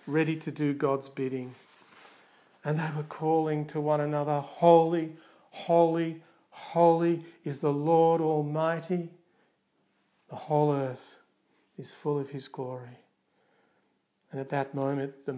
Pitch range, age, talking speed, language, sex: 140-160 Hz, 50-69, 125 wpm, English, male